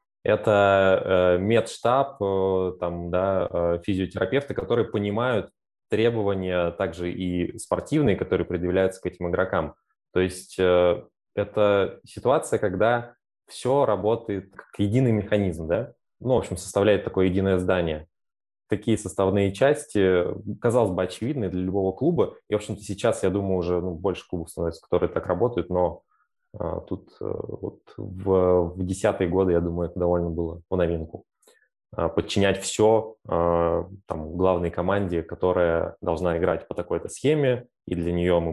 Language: Russian